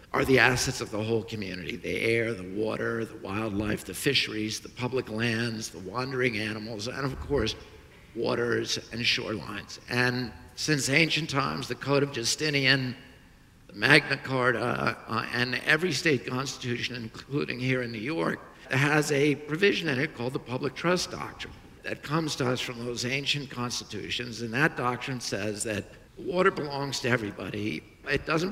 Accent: American